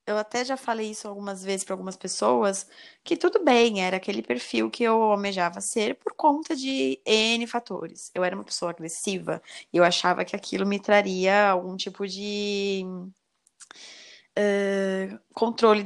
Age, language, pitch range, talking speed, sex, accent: 20-39, Portuguese, 180-240 Hz, 160 wpm, female, Brazilian